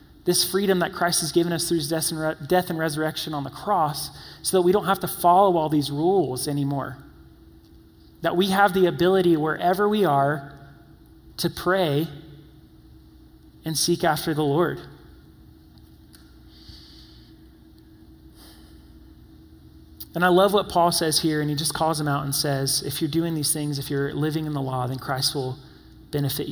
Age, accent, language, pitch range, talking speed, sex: 30-49, American, English, 140-175 Hz, 165 wpm, male